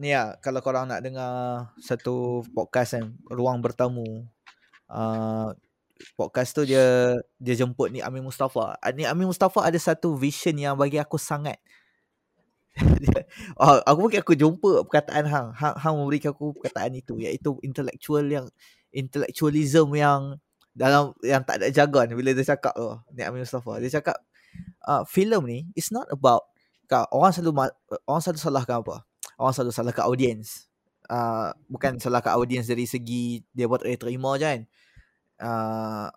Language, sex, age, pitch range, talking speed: Malay, male, 20-39, 120-150 Hz, 165 wpm